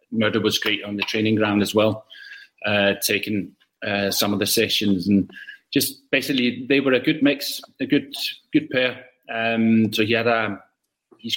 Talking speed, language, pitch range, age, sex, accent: 180 wpm, English, 110-120 Hz, 20-39, male, British